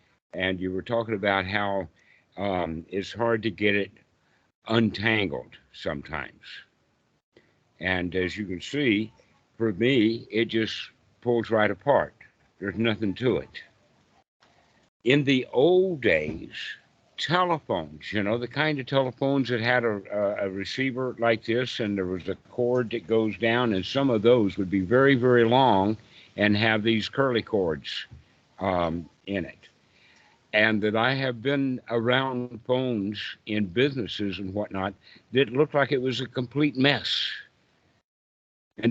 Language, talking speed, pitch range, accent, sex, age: English, 145 wpm, 100-130 Hz, American, male, 60-79